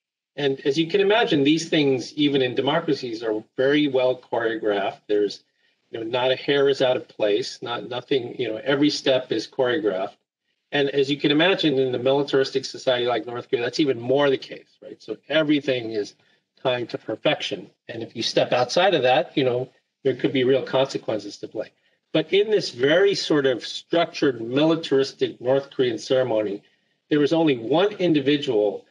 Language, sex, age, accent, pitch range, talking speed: English, male, 40-59, American, 130-155 Hz, 185 wpm